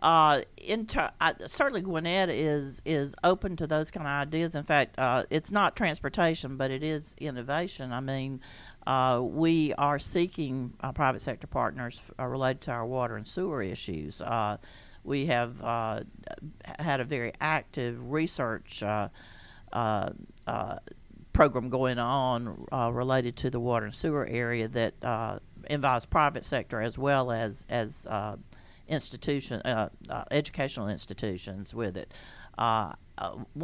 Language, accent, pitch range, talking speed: English, American, 115-145 Hz, 150 wpm